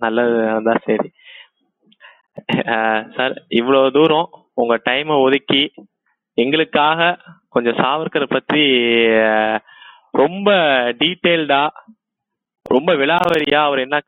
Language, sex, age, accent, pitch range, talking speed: Tamil, male, 20-39, native, 120-150 Hz, 75 wpm